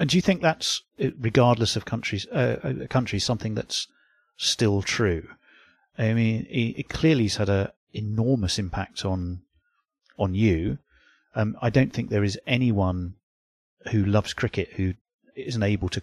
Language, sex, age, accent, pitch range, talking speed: English, male, 30-49, British, 100-125 Hz, 155 wpm